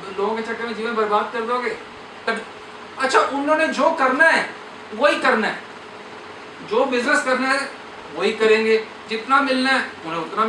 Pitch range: 190-275 Hz